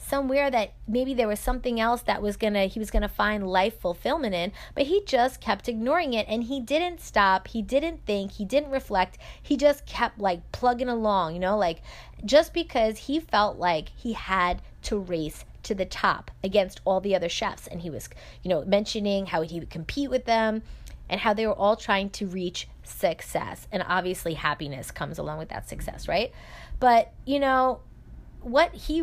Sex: female